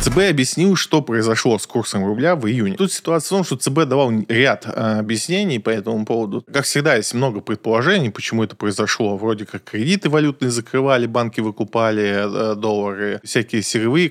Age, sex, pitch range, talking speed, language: 20-39, male, 110-140 Hz, 175 wpm, Russian